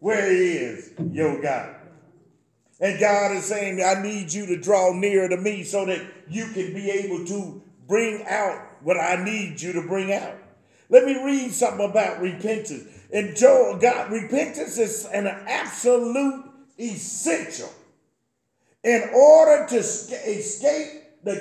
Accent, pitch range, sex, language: American, 195-265 Hz, male, English